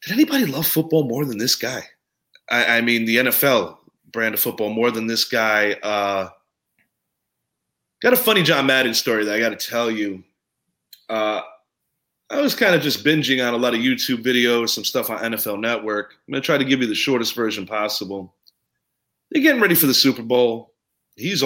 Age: 30-49